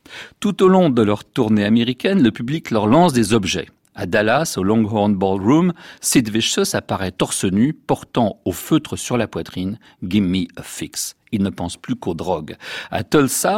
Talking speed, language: 180 wpm, French